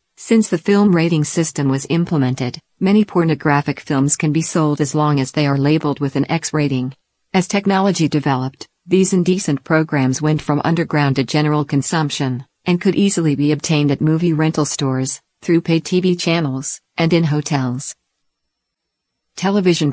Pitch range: 140-165 Hz